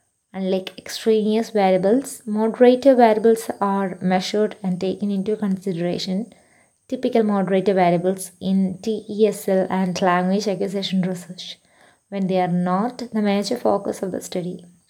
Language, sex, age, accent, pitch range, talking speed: English, female, 20-39, Indian, 185-220 Hz, 120 wpm